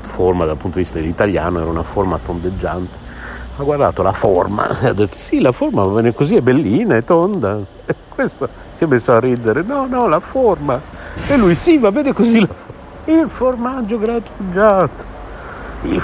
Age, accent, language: 60-79, native, Italian